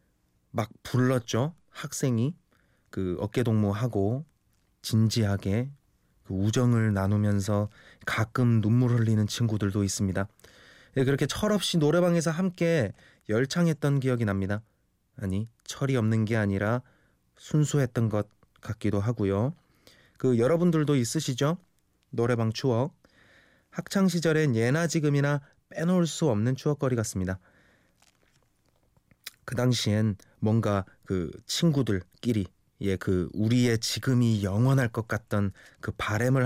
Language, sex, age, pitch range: Korean, male, 20-39, 105-135 Hz